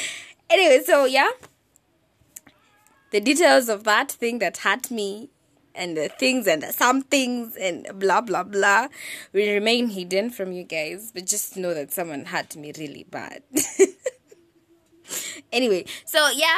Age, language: 20-39, English